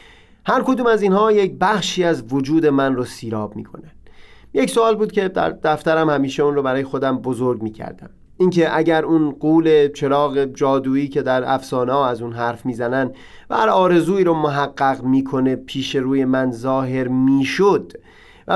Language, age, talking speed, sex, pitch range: Persian, 30-49, 165 wpm, male, 130-185 Hz